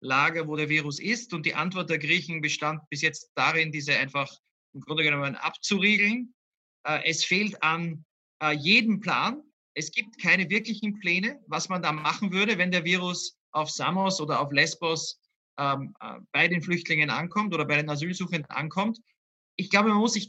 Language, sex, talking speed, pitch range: German, male, 180 wpm, 180-230 Hz